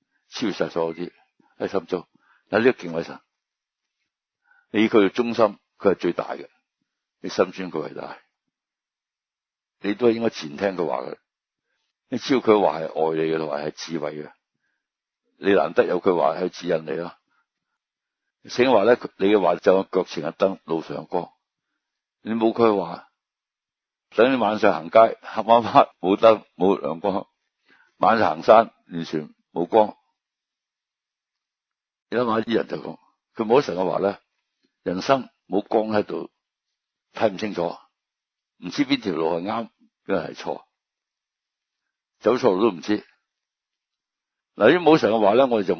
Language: Chinese